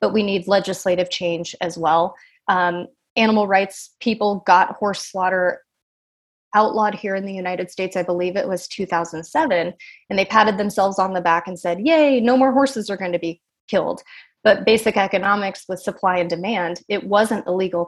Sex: female